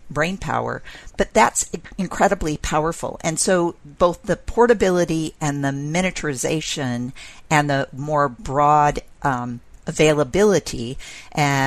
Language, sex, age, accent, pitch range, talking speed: English, female, 50-69, American, 135-165 Hz, 110 wpm